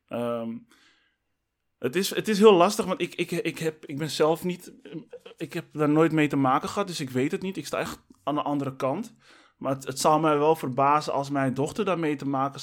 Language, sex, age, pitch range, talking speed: Dutch, male, 20-39, 130-155 Hz, 235 wpm